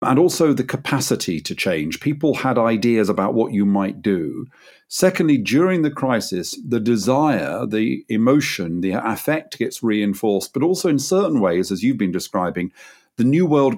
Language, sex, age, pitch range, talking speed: English, male, 40-59, 100-135 Hz, 165 wpm